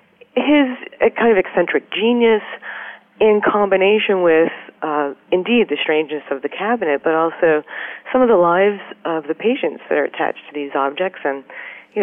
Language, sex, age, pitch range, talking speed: English, female, 40-59, 155-205 Hz, 165 wpm